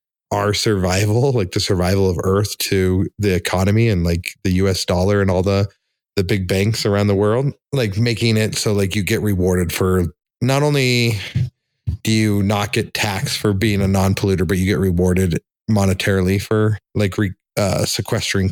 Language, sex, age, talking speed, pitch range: English, male, 30-49, 170 wpm, 95-115 Hz